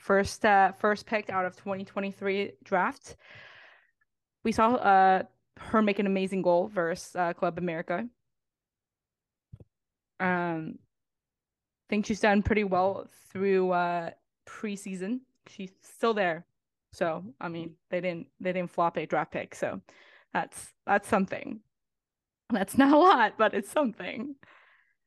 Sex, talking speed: female, 135 wpm